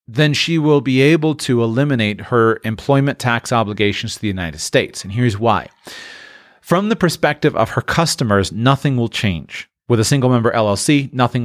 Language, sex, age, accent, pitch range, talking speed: English, male, 40-59, American, 110-140 Hz, 170 wpm